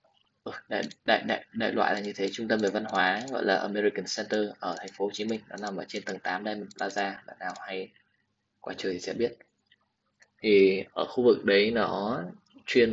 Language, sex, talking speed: Vietnamese, male, 220 wpm